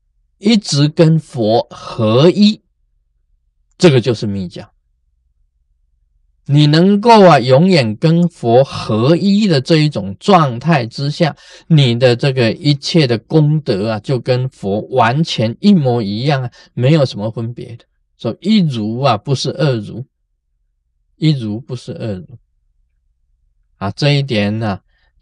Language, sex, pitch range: Chinese, male, 95-145 Hz